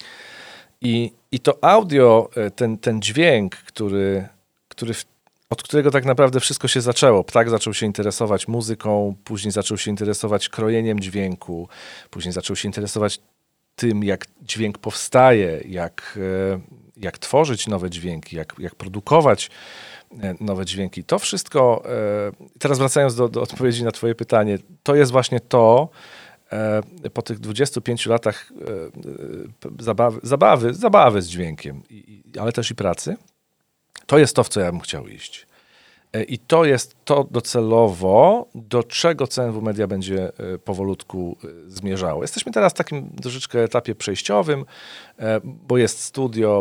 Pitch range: 95-120 Hz